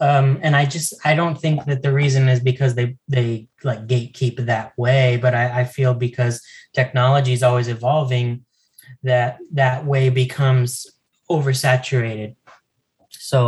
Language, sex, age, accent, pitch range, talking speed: English, male, 10-29, American, 120-135 Hz, 145 wpm